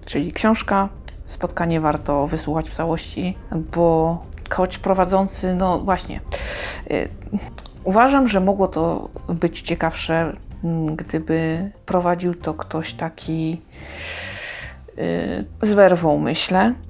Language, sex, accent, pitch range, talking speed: Polish, female, native, 160-195 Hz, 90 wpm